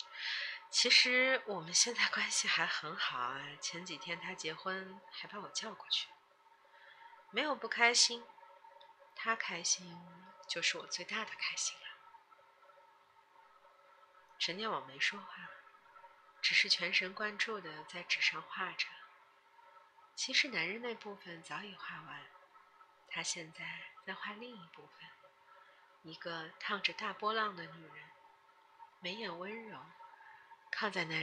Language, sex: Chinese, female